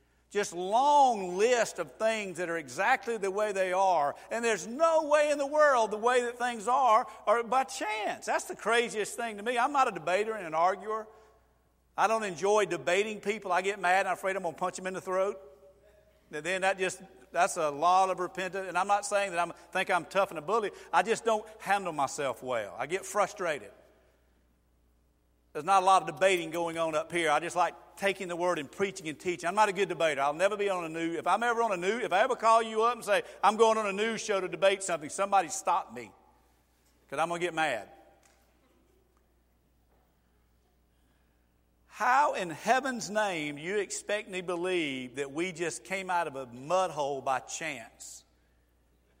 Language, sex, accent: English, male, American